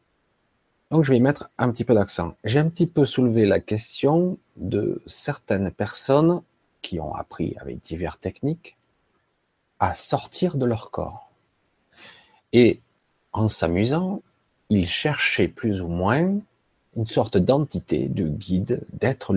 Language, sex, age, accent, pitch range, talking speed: French, male, 40-59, French, 90-125 Hz, 135 wpm